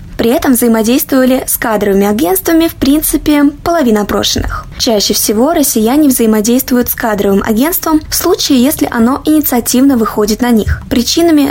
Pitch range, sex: 220-290 Hz, female